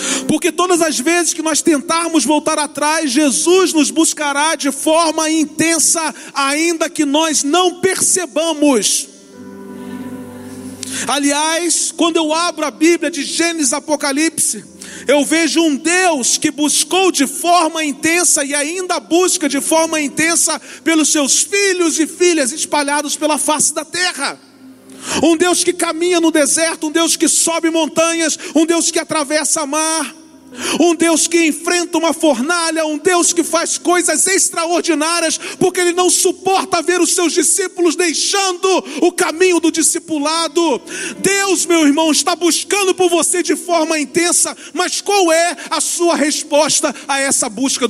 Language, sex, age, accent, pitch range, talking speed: Portuguese, male, 40-59, Brazilian, 300-345 Hz, 145 wpm